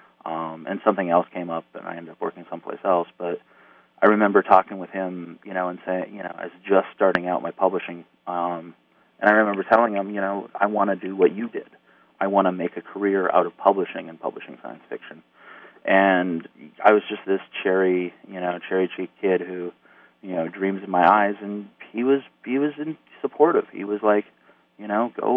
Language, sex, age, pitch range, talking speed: English, male, 30-49, 85-100 Hz, 215 wpm